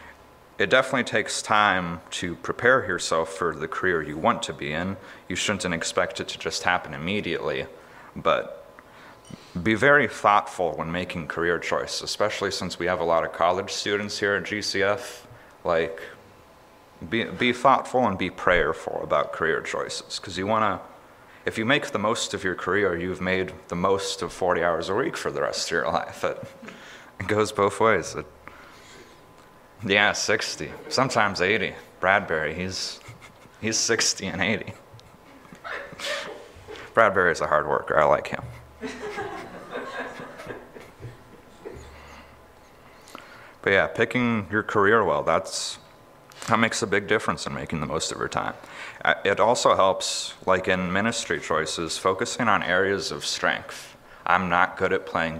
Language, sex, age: English, male, 30-49